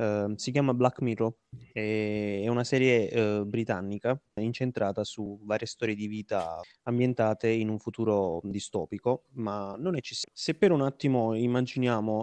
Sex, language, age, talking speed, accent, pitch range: male, Italian, 20-39, 145 wpm, native, 110-130 Hz